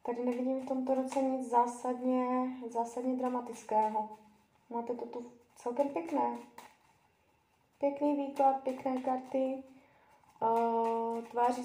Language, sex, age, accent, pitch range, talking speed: Czech, female, 20-39, native, 225-260 Hz, 105 wpm